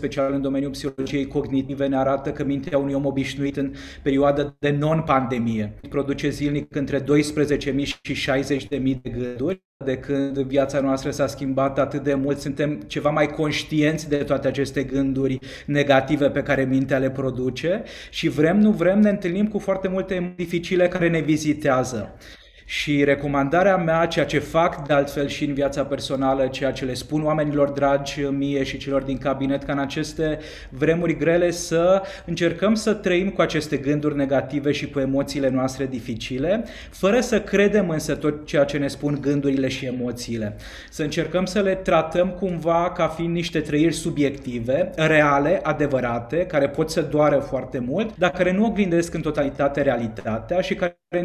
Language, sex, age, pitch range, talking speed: Romanian, male, 20-39, 135-165 Hz, 165 wpm